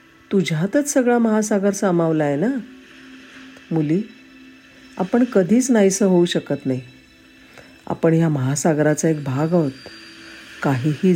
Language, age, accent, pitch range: Marathi, 50-69, native, 150-215 Hz